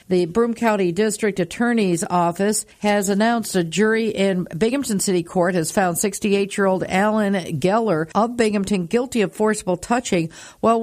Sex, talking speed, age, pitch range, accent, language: female, 145 wpm, 50-69, 185-225 Hz, American, English